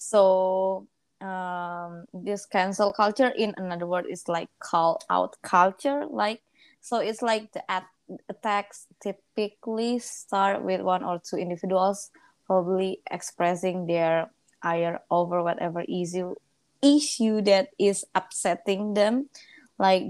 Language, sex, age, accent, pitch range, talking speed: English, female, 20-39, Indonesian, 175-215 Hz, 115 wpm